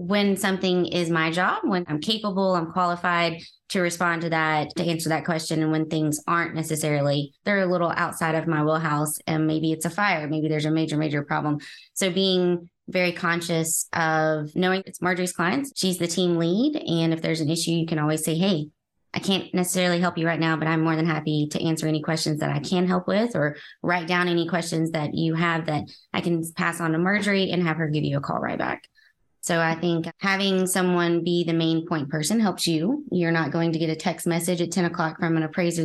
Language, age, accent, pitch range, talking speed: English, 20-39, American, 160-180 Hz, 225 wpm